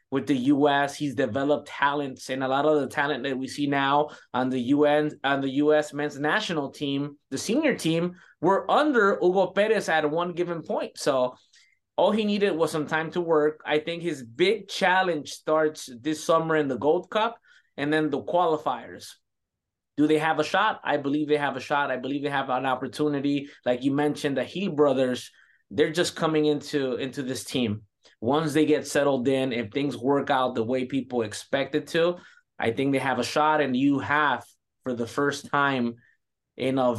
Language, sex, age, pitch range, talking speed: English, male, 20-39, 130-155 Hz, 195 wpm